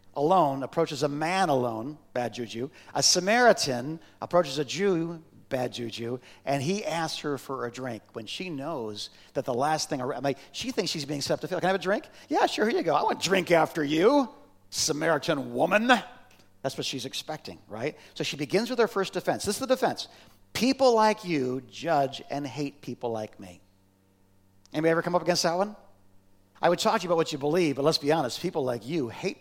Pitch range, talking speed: 130-175 Hz, 215 wpm